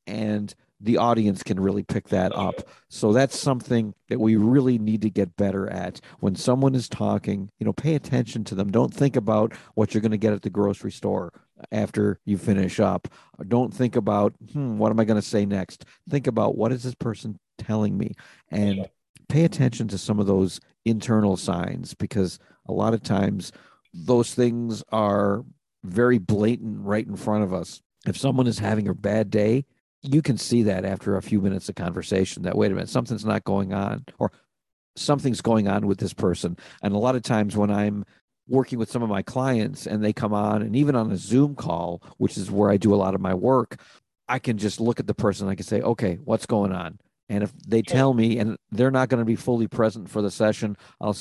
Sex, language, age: male, English, 50-69